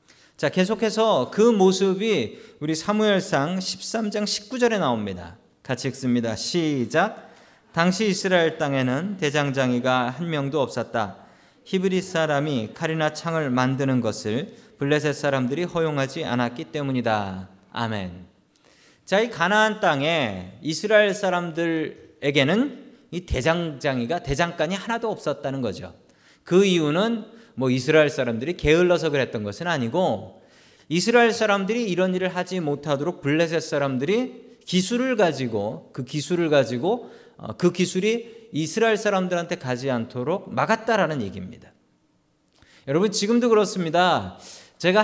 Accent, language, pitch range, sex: native, Korean, 140-205 Hz, male